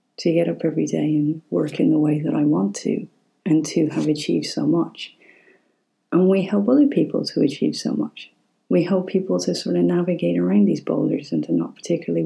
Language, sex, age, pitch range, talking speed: English, female, 40-59, 155-205 Hz, 210 wpm